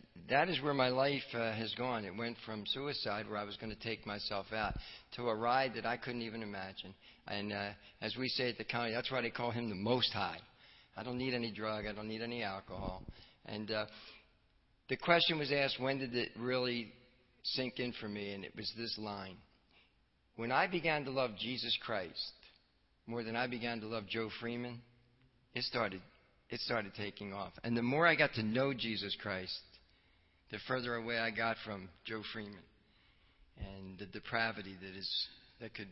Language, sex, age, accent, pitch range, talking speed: English, male, 50-69, American, 100-120 Hz, 195 wpm